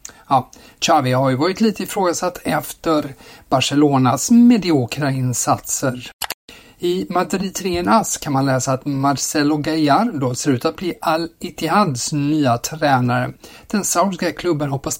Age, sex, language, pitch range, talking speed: 50-69, male, Swedish, 130-155 Hz, 125 wpm